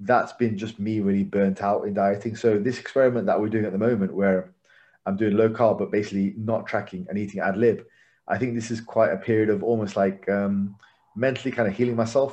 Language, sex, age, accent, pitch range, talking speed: English, male, 30-49, British, 100-120 Hz, 230 wpm